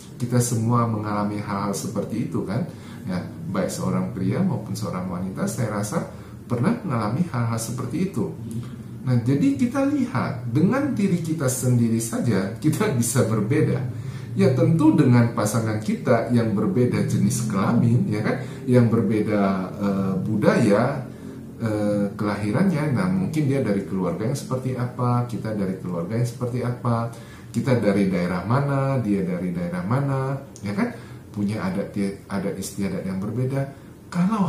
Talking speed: 140 wpm